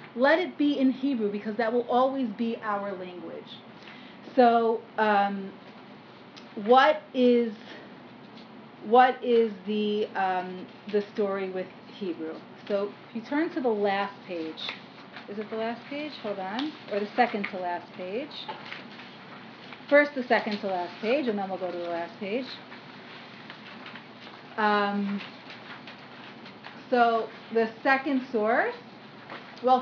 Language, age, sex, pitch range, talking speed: English, 30-49, female, 210-260 Hz, 130 wpm